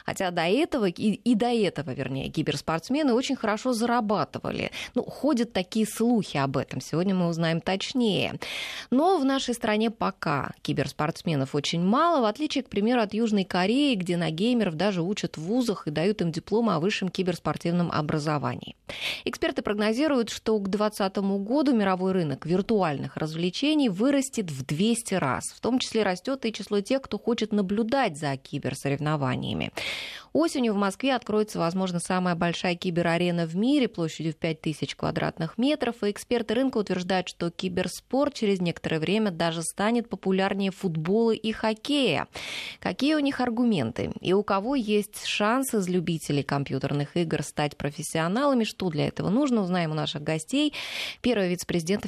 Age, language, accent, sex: 20-39, Russian, native, female